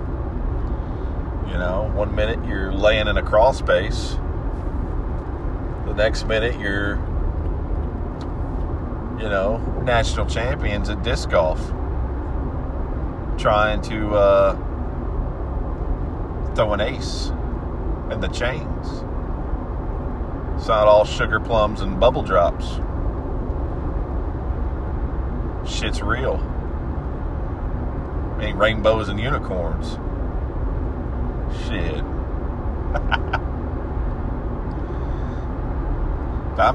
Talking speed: 75 wpm